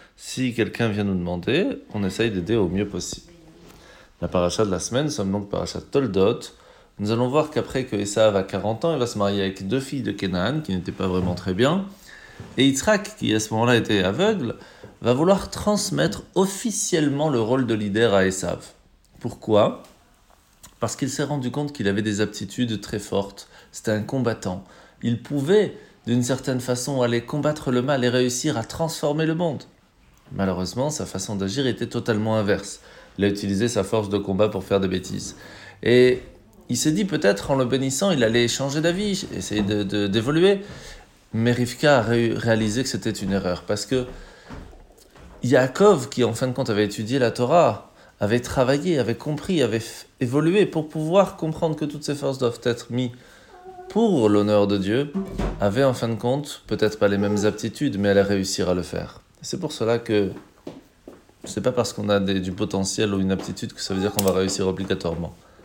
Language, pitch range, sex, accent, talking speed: French, 100-140 Hz, male, French, 190 wpm